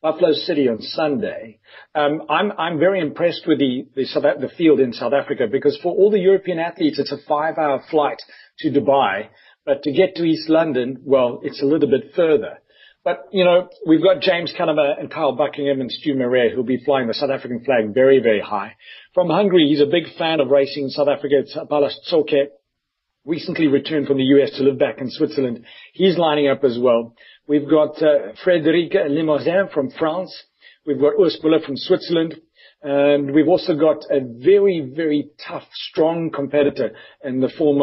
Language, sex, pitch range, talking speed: English, male, 135-165 Hz, 190 wpm